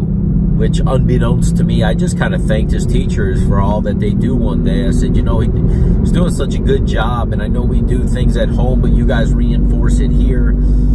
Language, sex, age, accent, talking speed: English, male, 30-49, American, 225 wpm